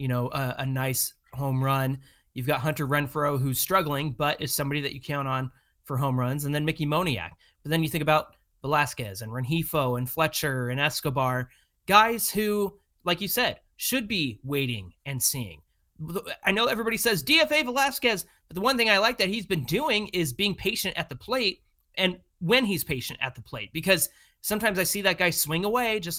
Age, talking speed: 30-49, 200 wpm